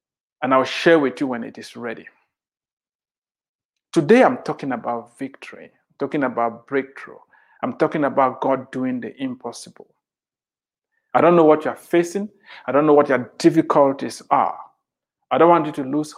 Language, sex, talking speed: English, male, 160 wpm